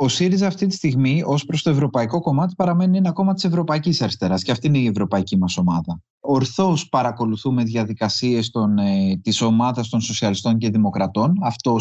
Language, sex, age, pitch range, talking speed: Greek, male, 30-49, 120-185 Hz, 170 wpm